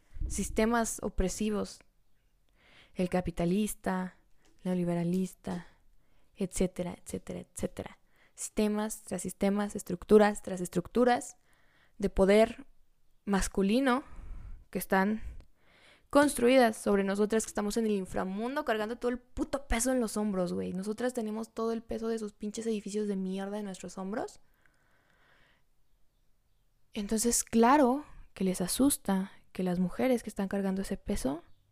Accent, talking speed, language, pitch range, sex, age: Mexican, 120 wpm, Spanish, 185-225 Hz, female, 10-29